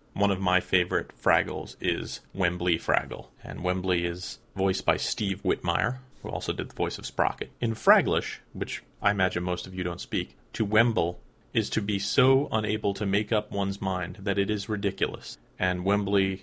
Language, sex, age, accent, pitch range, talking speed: English, male, 30-49, American, 90-105 Hz, 185 wpm